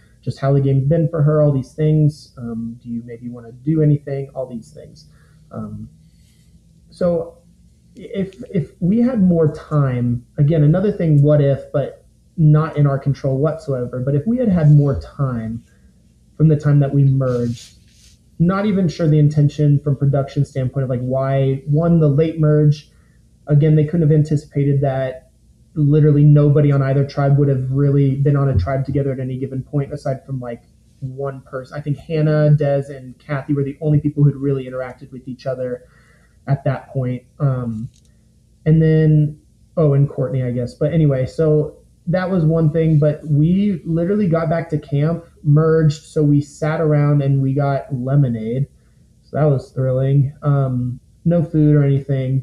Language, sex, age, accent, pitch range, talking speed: English, male, 30-49, American, 130-155 Hz, 180 wpm